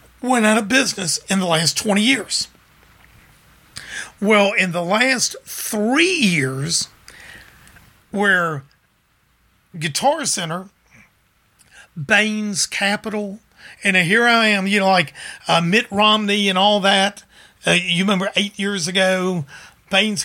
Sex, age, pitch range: male, 50-69, 180-220 Hz